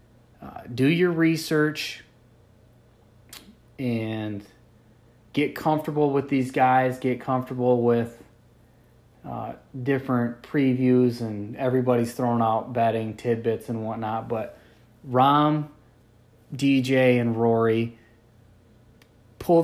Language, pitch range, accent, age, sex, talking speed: English, 115-130 Hz, American, 20-39, male, 90 wpm